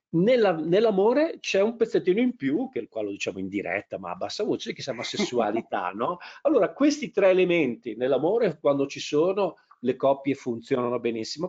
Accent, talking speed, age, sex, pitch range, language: native, 170 wpm, 40-59, male, 125-185 Hz, Italian